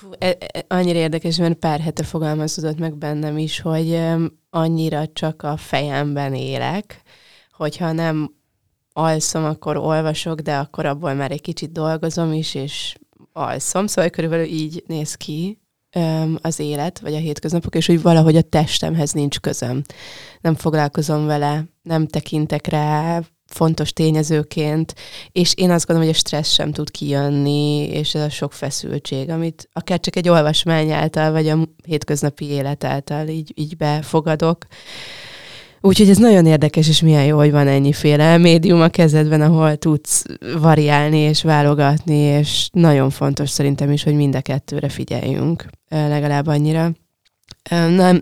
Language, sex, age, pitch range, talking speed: Hungarian, female, 20-39, 150-165 Hz, 145 wpm